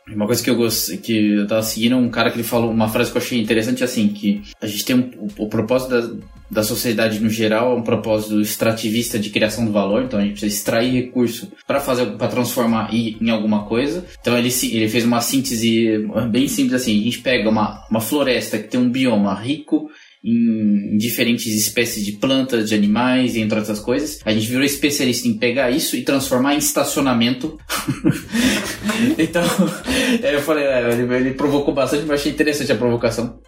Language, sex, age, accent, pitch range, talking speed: Portuguese, male, 20-39, Brazilian, 110-125 Hz, 195 wpm